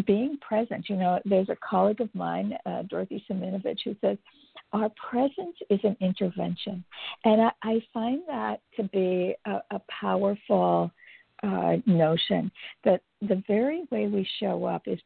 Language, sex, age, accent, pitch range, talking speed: English, female, 50-69, American, 180-220 Hz, 155 wpm